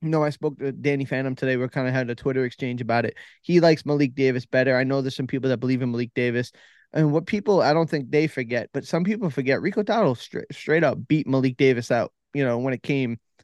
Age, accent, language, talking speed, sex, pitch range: 20-39, American, English, 255 wpm, male, 125-150 Hz